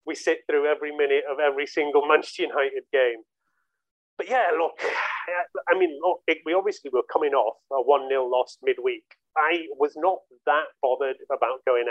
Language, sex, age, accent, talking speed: English, male, 30-49, British, 165 wpm